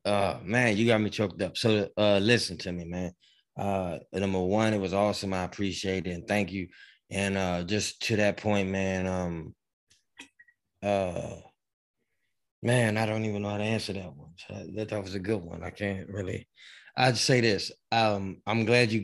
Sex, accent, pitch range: male, American, 95-115 Hz